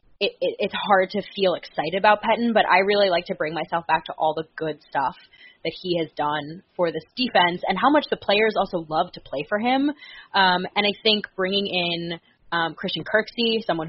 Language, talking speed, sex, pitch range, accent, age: English, 205 wpm, female, 160-205 Hz, American, 20-39